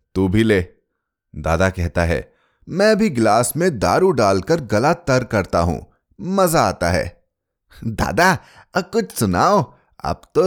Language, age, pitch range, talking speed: Hindi, 30-49, 85-130 Hz, 140 wpm